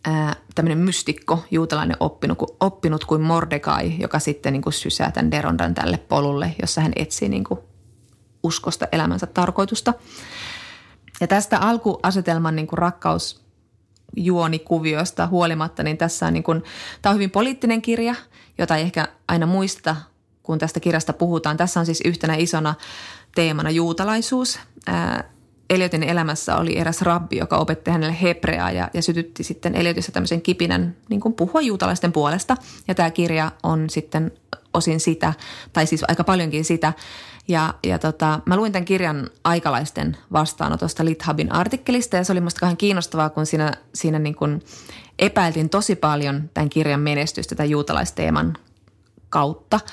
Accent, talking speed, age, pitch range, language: native, 145 wpm, 30-49, 150-180 Hz, Finnish